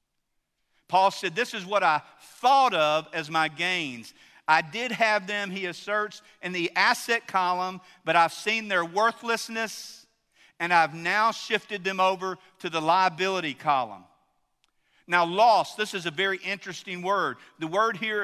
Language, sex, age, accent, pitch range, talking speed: English, male, 50-69, American, 160-210 Hz, 155 wpm